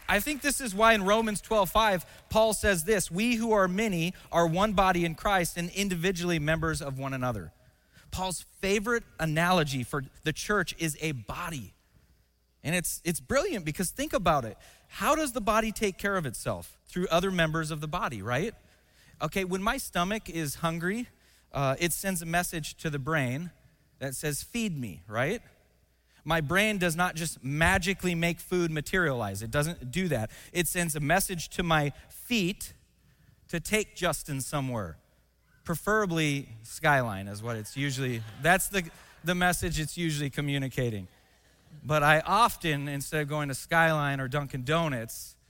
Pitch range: 135-185 Hz